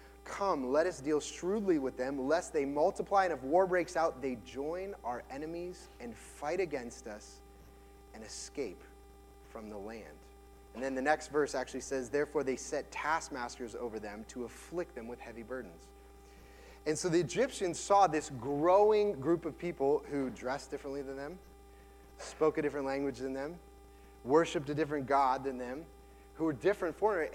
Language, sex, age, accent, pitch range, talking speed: English, male, 30-49, American, 135-180 Hz, 170 wpm